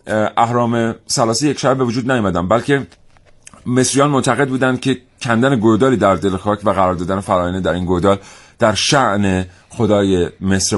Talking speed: 150 wpm